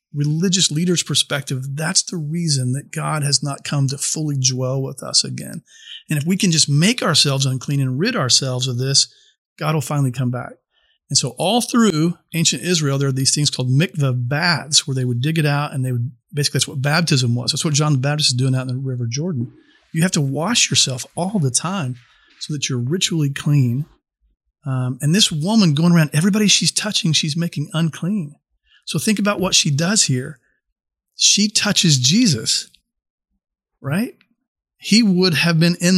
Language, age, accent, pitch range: English, 40-59, American, 130-170 Hz